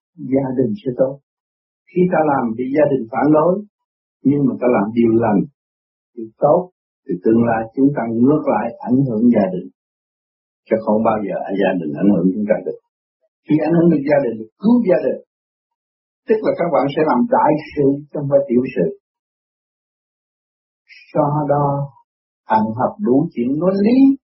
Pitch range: 110-165 Hz